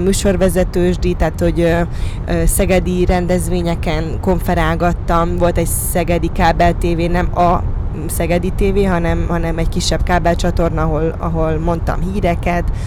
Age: 20-39